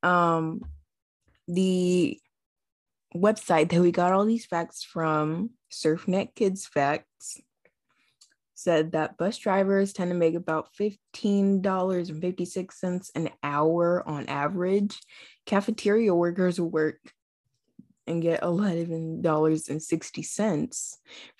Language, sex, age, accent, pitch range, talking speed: English, female, 20-39, American, 165-205 Hz, 90 wpm